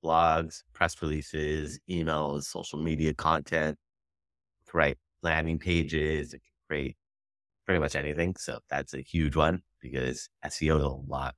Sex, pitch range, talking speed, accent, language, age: male, 75-90 Hz, 140 wpm, American, English, 30-49